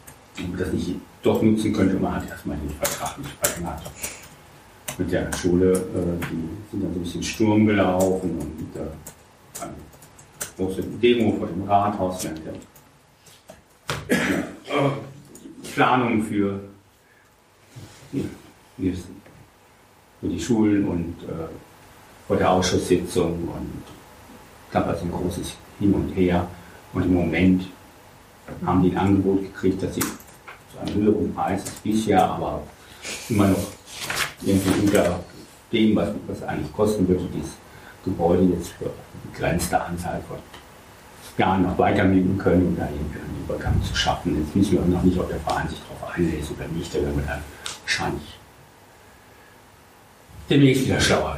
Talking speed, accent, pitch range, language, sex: 130 wpm, German, 85-100 Hz, German, male